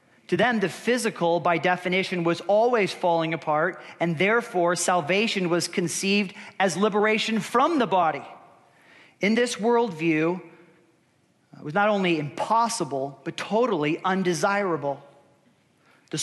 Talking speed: 120 wpm